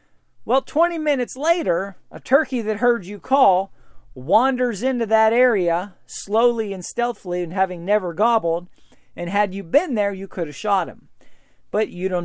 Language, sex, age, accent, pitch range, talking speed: English, male, 40-59, American, 155-210 Hz, 165 wpm